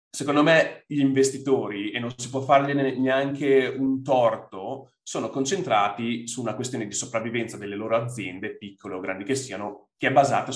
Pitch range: 115-145 Hz